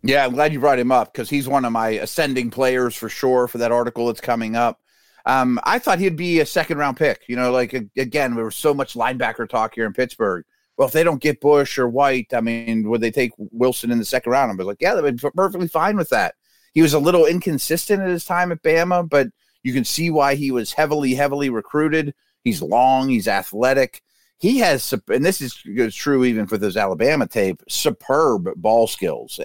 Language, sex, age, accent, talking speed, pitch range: English, male, 30-49, American, 220 wpm, 115-150 Hz